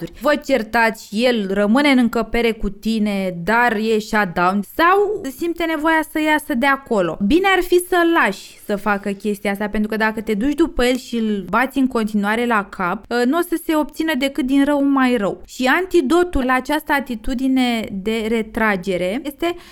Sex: female